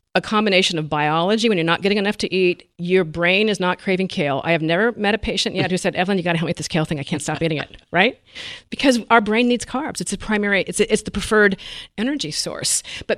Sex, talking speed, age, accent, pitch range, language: female, 260 wpm, 50-69, American, 170-225 Hz, English